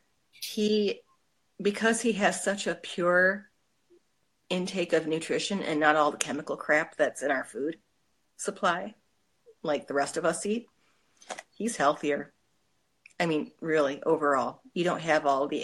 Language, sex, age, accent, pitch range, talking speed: English, female, 40-59, American, 145-175 Hz, 145 wpm